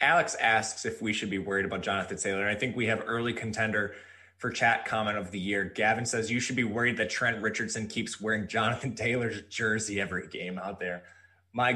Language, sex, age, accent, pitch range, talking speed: English, male, 20-39, American, 110-130 Hz, 210 wpm